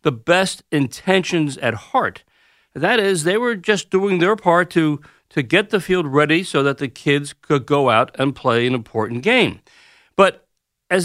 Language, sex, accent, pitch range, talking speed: English, male, American, 140-205 Hz, 180 wpm